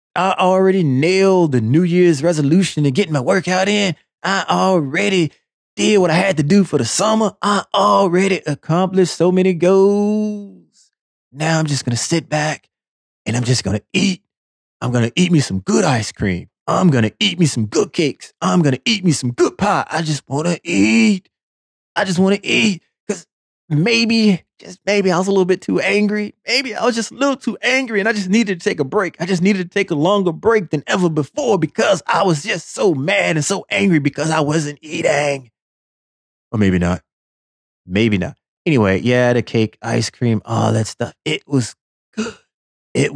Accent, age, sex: American, 30-49, male